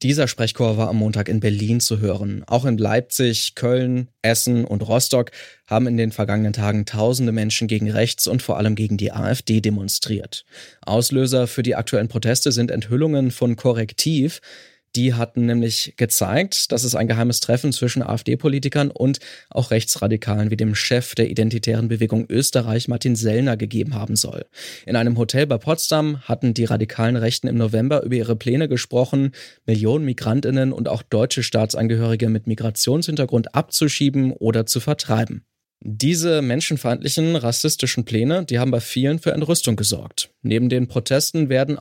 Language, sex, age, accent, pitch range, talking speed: German, male, 20-39, German, 115-130 Hz, 155 wpm